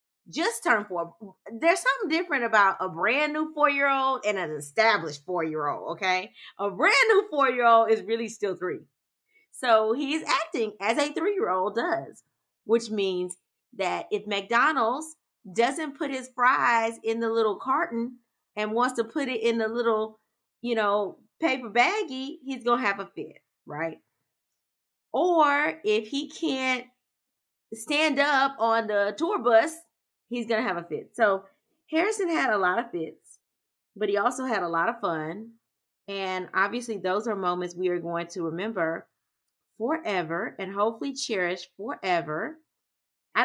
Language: English